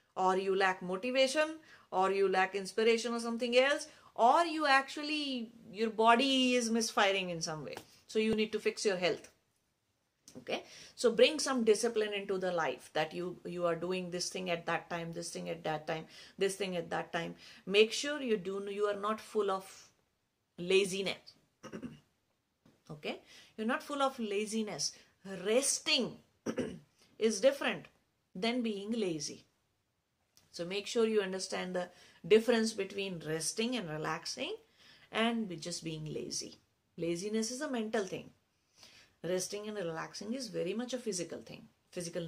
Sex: female